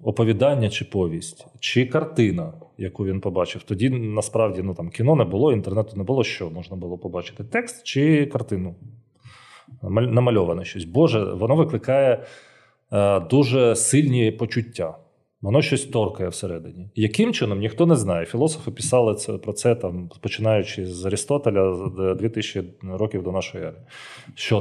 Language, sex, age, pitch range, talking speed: Ukrainian, male, 30-49, 95-130 Hz, 135 wpm